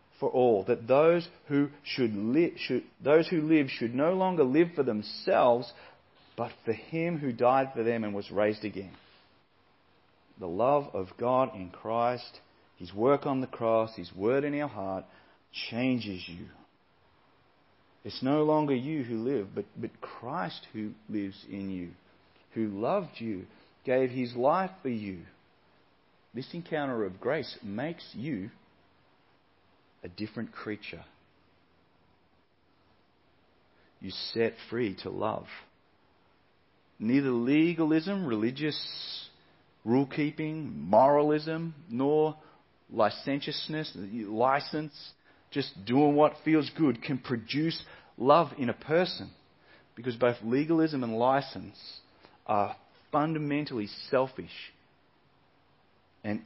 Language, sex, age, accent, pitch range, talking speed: English, male, 40-59, Australian, 100-150 Hz, 115 wpm